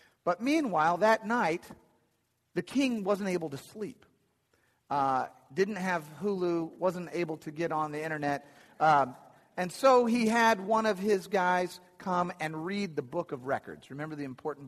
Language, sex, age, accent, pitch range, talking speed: English, male, 40-59, American, 145-200 Hz, 165 wpm